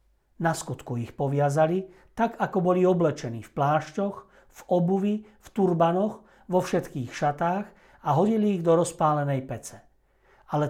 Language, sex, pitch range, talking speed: Slovak, male, 140-180 Hz, 135 wpm